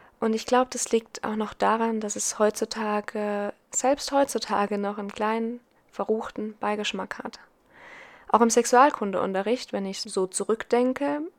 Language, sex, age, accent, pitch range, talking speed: German, female, 20-39, German, 200-245 Hz, 135 wpm